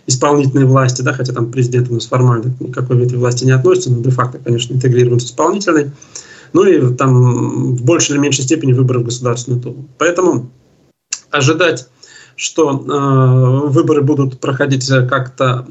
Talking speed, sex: 155 wpm, male